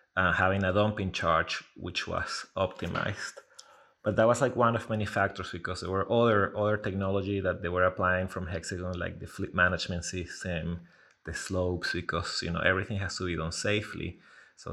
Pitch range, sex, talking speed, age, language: 90-110 Hz, male, 185 wpm, 30-49, English